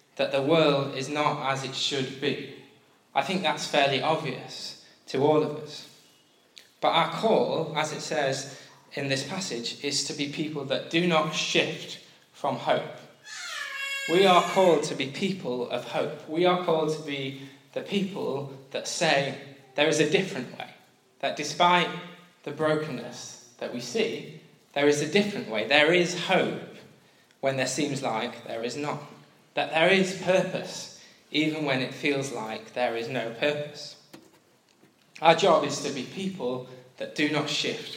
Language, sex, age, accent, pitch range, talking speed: English, male, 10-29, British, 135-175 Hz, 165 wpm